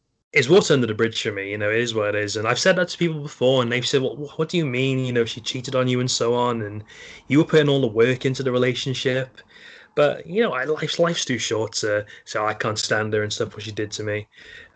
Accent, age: British, 20-39